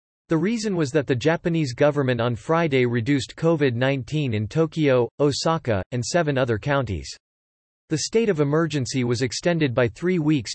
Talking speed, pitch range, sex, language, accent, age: 155 wpm, 120-160 Hz, male, English, American, 40-59